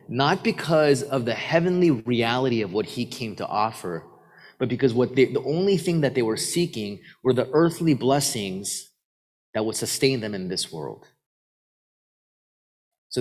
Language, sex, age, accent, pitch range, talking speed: English, male, 30-49, American, 115-145 Hz, 160 wpm